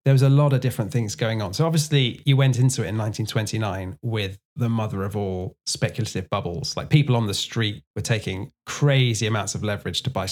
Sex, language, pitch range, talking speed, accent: male, English, 110-140 Hz, 215 wpm, British